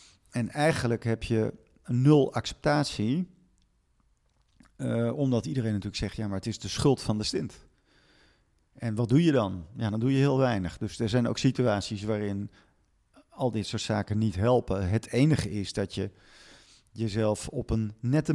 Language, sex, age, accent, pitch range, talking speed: Dutch, male, 50-69, Dutch, 100-125 Hz, 170 wpm